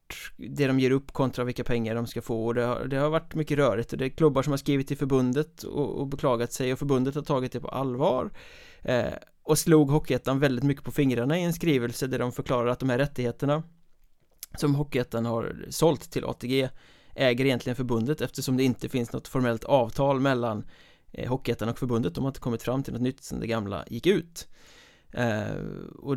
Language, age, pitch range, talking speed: Swedish, 20-39, 120-140 Hz, 205 wpm